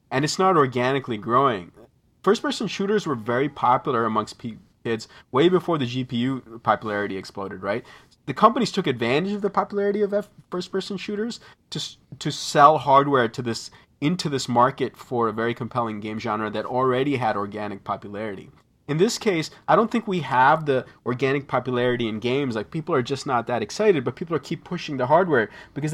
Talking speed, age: 185 wpm, 30-49